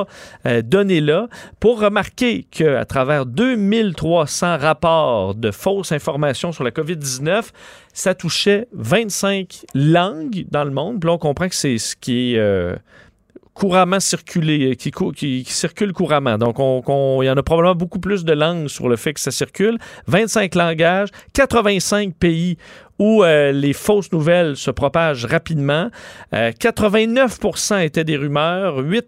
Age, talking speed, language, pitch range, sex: 40-59, 150 wpm, French, 145-200 Hz, male